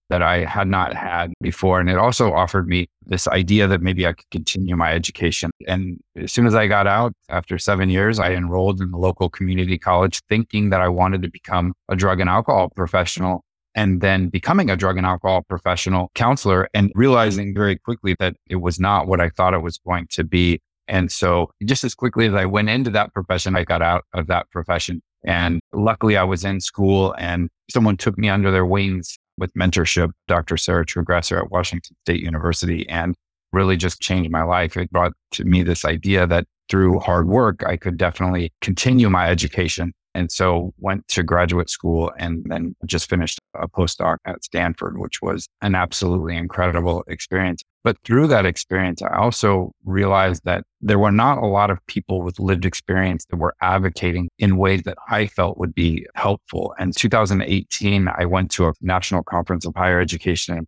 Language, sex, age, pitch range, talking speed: English, male, 30-49, 85-95 Hz, 195 wpm